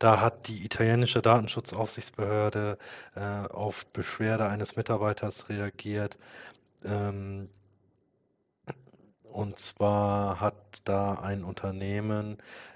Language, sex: German, male